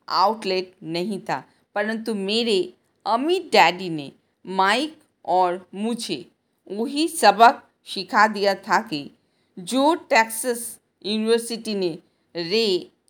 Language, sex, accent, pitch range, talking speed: Hindi, female, native, 200-260 Hz, 100 wpm